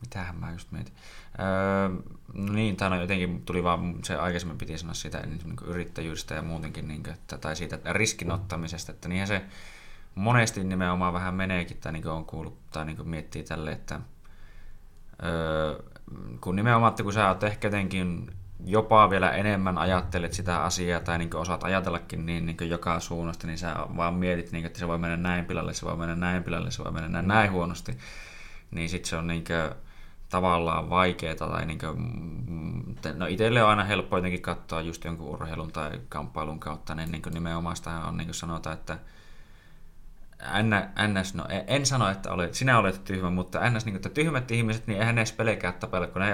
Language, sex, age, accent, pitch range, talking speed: Finnish, male, 20-39, native, 85-100 Hz, 185 wpm